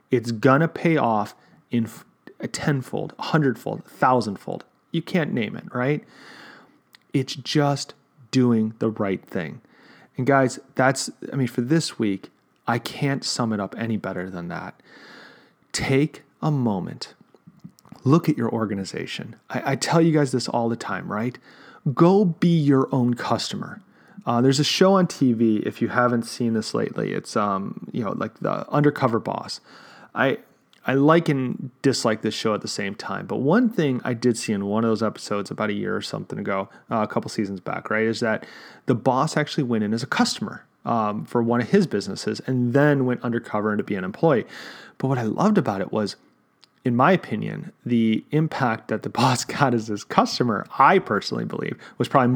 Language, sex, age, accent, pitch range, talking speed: English, male, 30-49, American, 115-145 Hz, 190 wpm